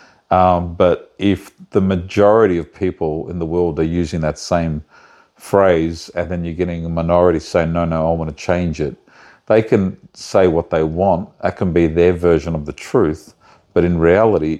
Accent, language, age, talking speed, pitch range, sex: Australian, English, 50-69, 190 wpm, 80-90 Hz, male